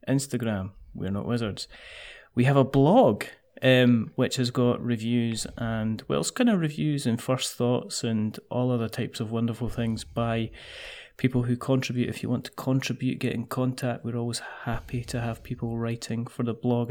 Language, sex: English, male